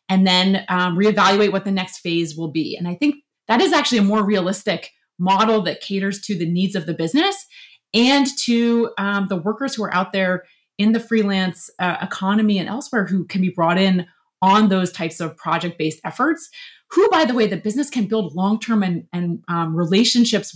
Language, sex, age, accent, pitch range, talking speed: English, female, 30-49, American, 175-225 Hz, 200 wpm